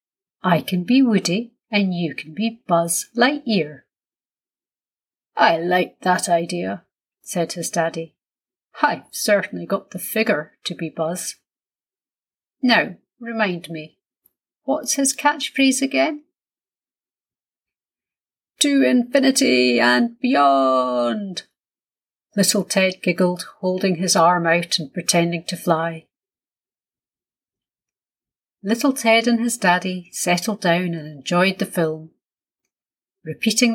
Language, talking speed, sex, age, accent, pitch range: English, 105 wpm, female, 40-59, British, 170-235 Hz